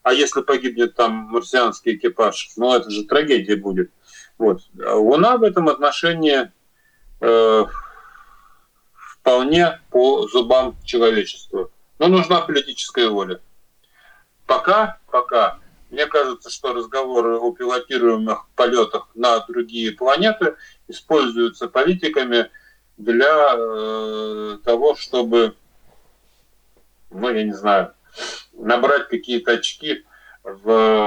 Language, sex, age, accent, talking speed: Russian, male, 30-49, native, 100 wpm